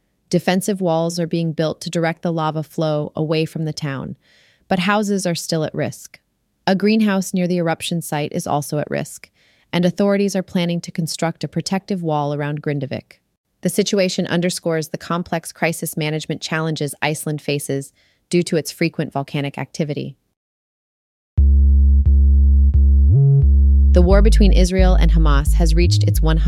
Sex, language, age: female, English, 30-49